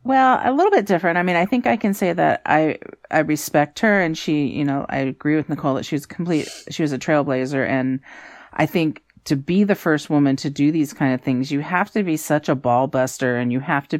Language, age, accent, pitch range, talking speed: English, 40-59, American, 140-175 Hz, 255 wpm